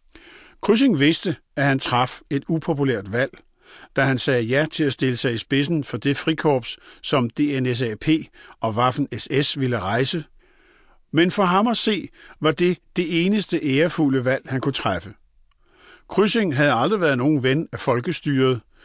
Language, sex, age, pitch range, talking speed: Danish, male, 50-69, 130-165 Hz, 155 wpm